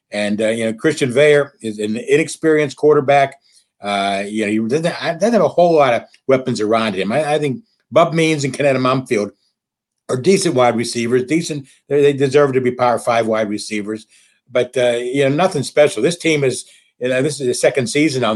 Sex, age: male, 60-79